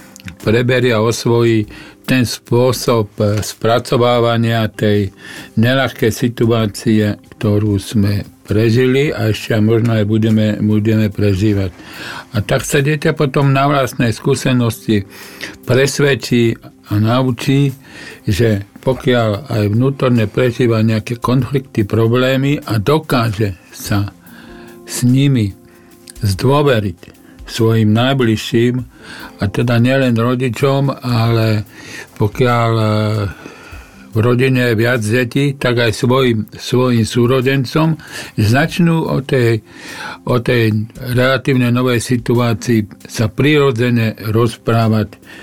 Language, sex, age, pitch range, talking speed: Slovak, male, 50-69, 110-130 Hz, 100 wpm